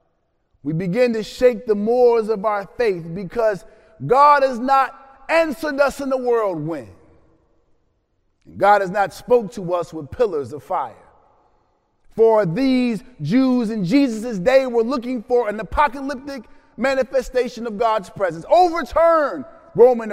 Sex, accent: male, American